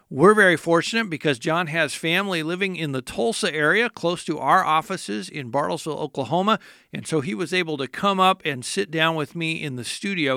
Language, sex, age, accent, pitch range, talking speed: English, male, 50-69, American, 150-185 Hz, 205 wpm